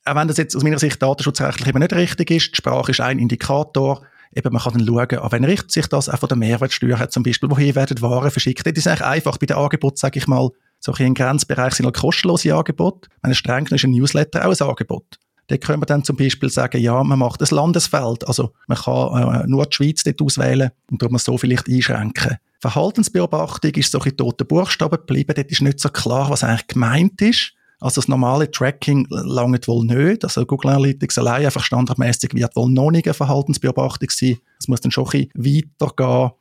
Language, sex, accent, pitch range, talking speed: German, male, Austrian, 125-150 Hz, 220 wpm